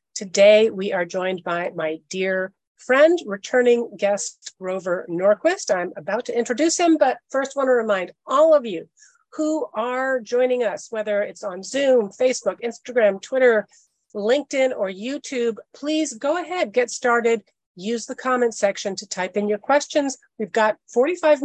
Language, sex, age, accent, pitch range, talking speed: English, female, 40-59, American, 195-260 Hz, 155 wpm